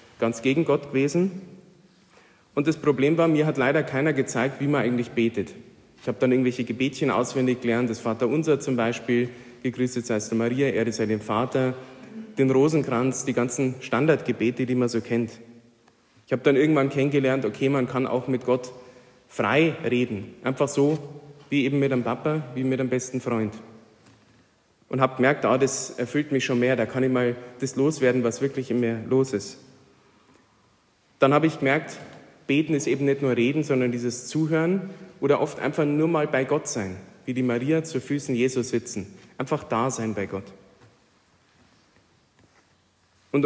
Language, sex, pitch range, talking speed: German, male, 120-145 Hz, 175 wpm